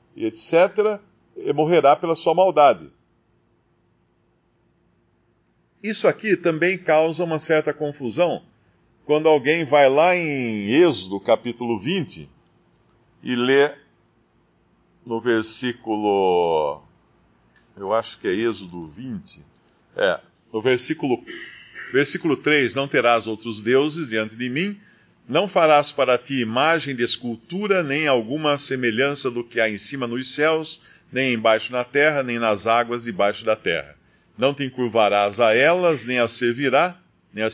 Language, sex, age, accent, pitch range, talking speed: Portuguese, male, 50-69, Brazilian, 120-155 Hz, 125 wpm